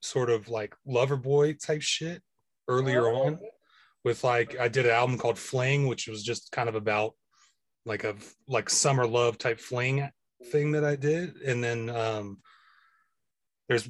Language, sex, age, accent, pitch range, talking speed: English, male, 30-49, American, 115-140 Hz, 165 wpm